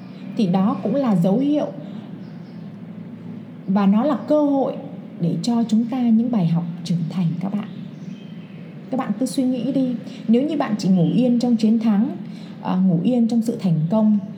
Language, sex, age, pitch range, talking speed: Vietnamese, female, 20-39, 185-225 Hz, 180 wpm